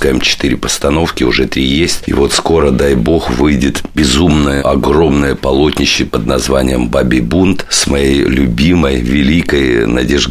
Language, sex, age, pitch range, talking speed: Russian, male, 50-69, 65-80 Hz, 135 wpm